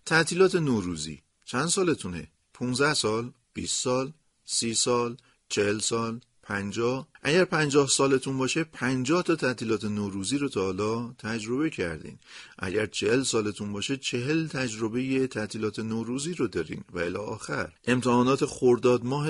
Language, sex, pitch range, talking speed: Persian, male, 95-130 Hz, 125 wpm